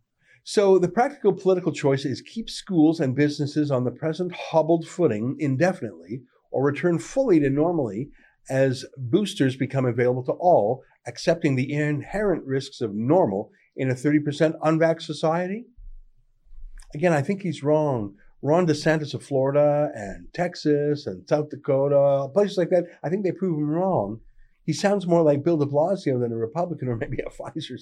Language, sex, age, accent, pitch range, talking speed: English, male, 50-69, American, 130-170 Hz, 160 wpm